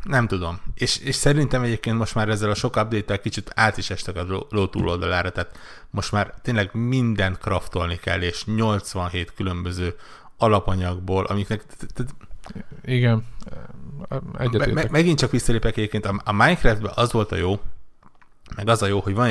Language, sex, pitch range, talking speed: Hungarian, male, 95-120 Hz, 145 wpm